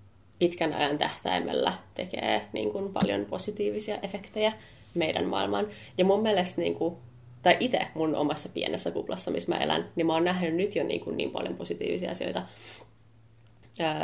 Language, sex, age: Finnish, female, 20-39